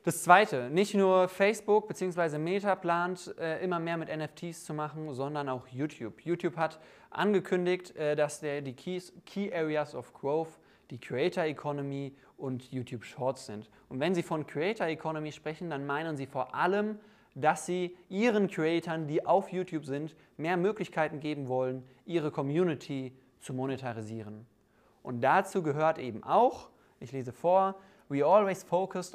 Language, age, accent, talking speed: German, 20-39, German, 155 wpm